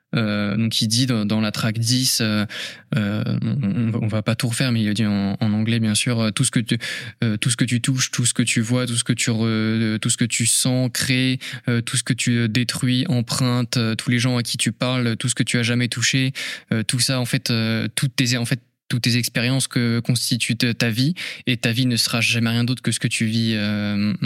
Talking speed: 255 wpm